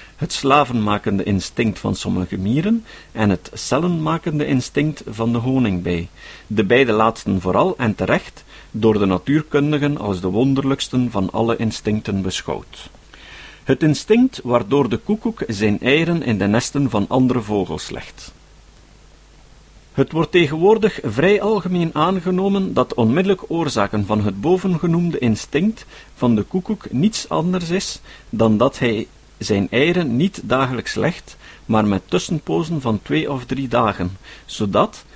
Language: Dutch